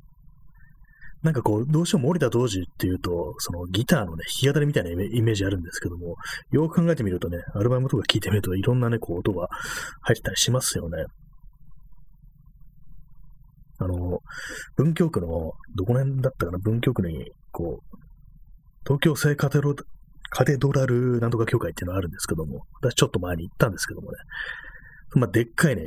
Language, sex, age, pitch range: Japanese, male, 30-49, 95-145 Hz